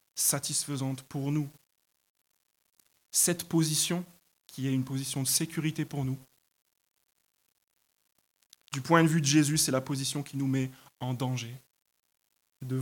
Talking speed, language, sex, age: 130 wpm, French, male, 20-39